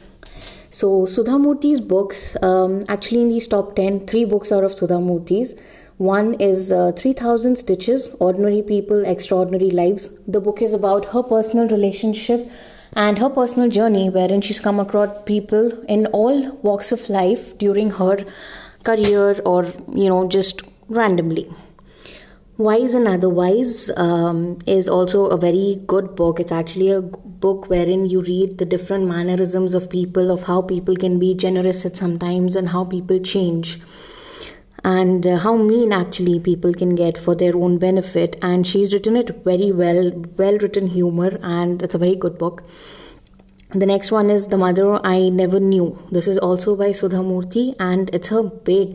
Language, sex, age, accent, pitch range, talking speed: English, female, 20-39, Indian, 180-210 Hz, 165 wpm